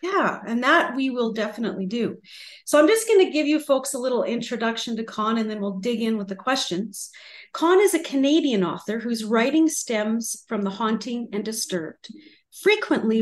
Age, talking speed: 40-59, 190 wpm